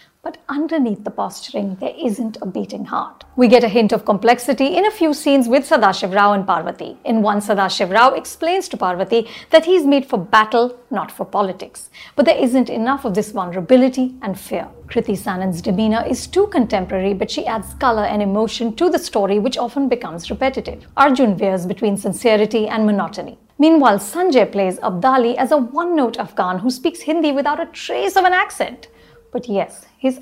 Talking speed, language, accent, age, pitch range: 185 wpm, English, Indian, 50-69, 205-275 Hz